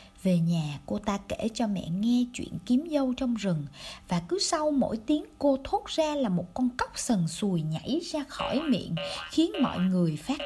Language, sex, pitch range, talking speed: Vietnamese, female, 180-275 Hz, 200 wpm